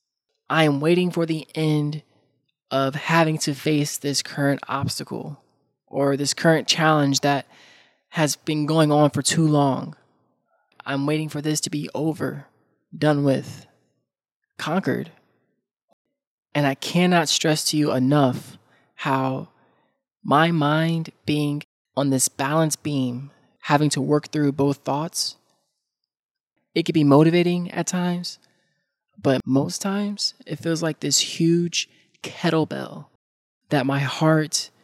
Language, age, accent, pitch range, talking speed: English, 20-39, American, 140-165 Hz, 125 wpm